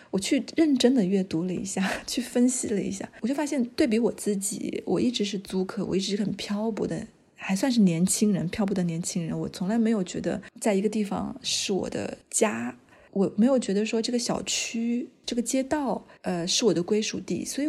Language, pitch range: Chinese, 195-245 Hz